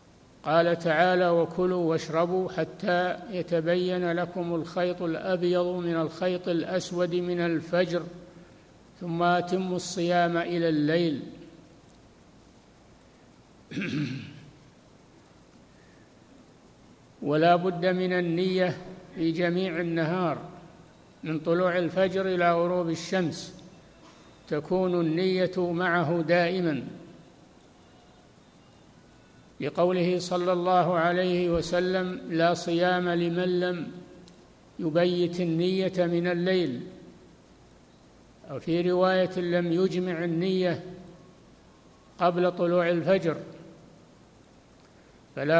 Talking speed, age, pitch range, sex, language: 80 wpm, 60-79, 170-180 Hz, male, Arabic